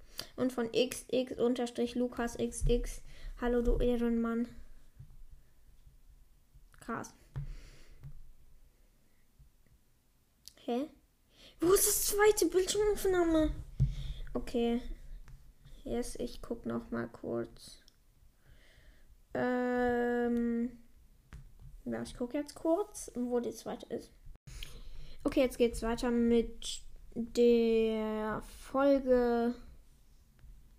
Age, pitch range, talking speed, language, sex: 10-29, 235-280 Hz, 80 wpm, German, female